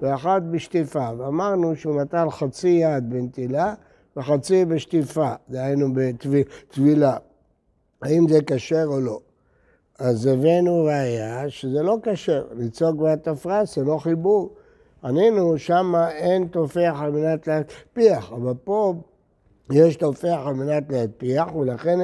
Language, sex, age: Hebrew, male, 60-79